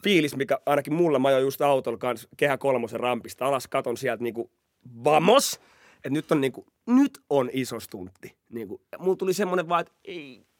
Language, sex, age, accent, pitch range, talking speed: Finnish, male, 30-49, native, 120-170 Hz, 170 wpm